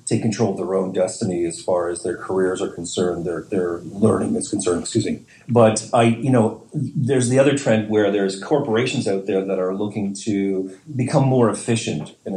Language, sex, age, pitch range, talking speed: English, male, 40-59, 95-115 Hz, 200 wpm